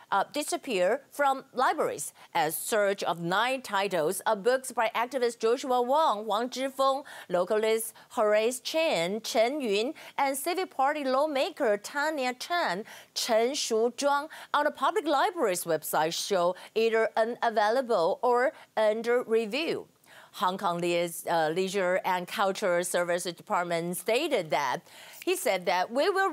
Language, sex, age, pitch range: Chinese, female, 40-59, 195-265 Hz